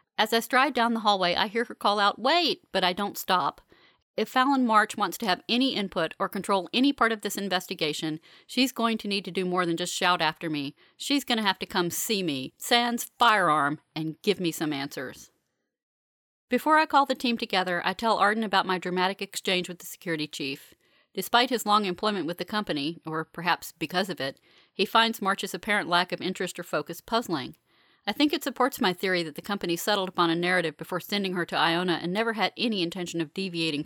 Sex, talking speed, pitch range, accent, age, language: female, 215 wpm, 165-210 Hz, American, 40-59, English